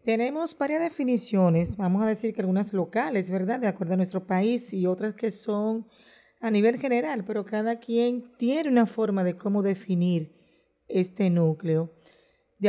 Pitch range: 195-235 Hz